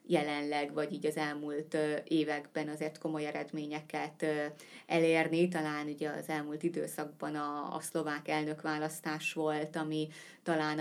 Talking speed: 120 wpm